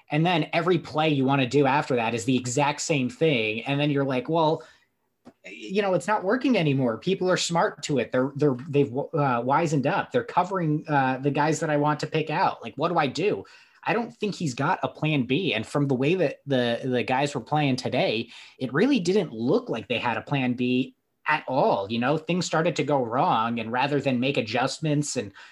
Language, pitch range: English, 125-155 Hz